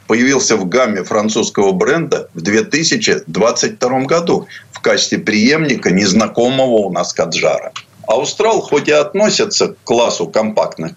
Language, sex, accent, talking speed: Russian, male, native, 120 wpm